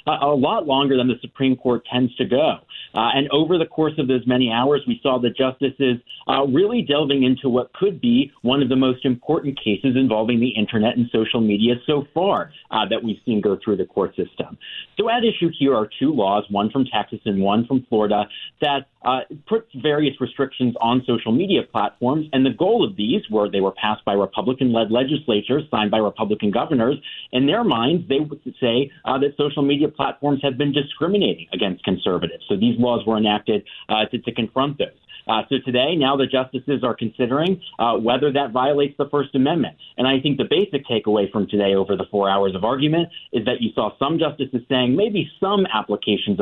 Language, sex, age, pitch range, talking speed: English, male, 40-59, 110-140 Hz, 205 wpm